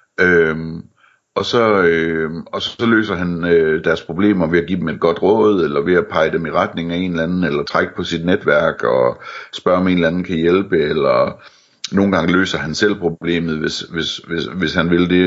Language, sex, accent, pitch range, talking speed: Danish, male, native, 80-95 Hz, 220 wpm